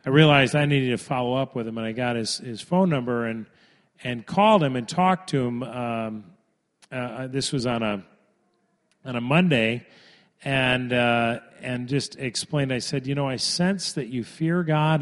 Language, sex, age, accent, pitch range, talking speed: English, male, 40-59, American, 120-150 Hz, 190 wpm